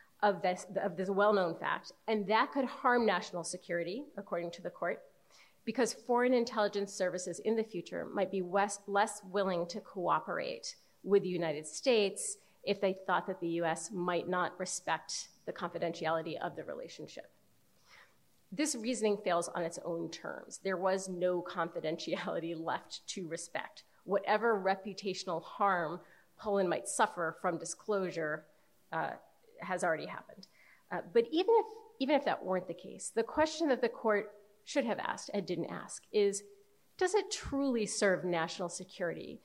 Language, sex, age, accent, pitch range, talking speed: English, female, 30-49, American, 180-245 Hz, 150 wpm